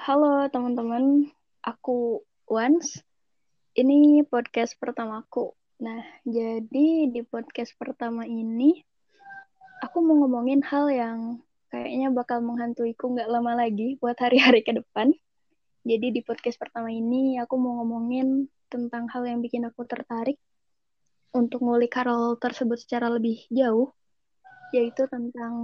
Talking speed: 115 wpm